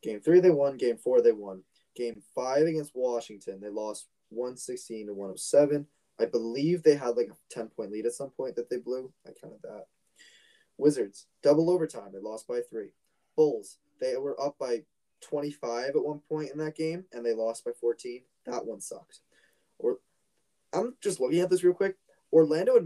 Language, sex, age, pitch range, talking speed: English, male, 20-39, 115-170 Hz, 200 wpm